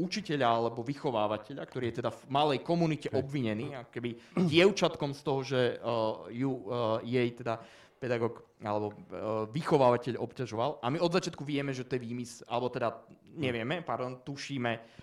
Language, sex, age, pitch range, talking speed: Slovak, male, 20-39, 120-155 Hz, 150 wpm